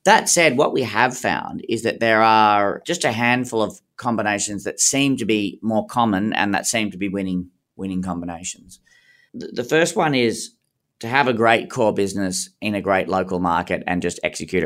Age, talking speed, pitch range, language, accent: 30-49, 190 wpm, 90-115 Hz, English, Australian